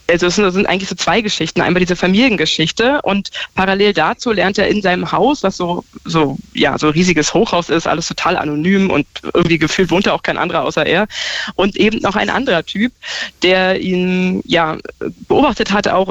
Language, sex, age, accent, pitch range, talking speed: German, female, 20-39, German, 165-205 Hz, 190 wpm